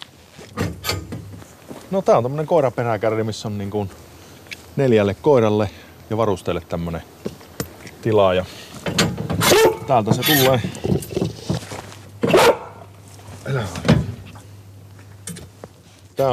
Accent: native